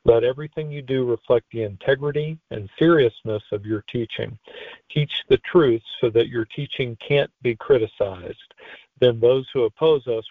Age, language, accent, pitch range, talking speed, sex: 50-69, English, American, 115-155 Hz, 155 wpm, male